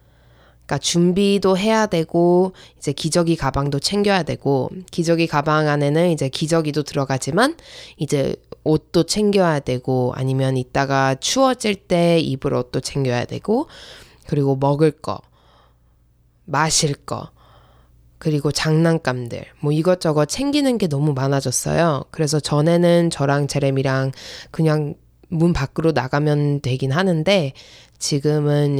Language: Korean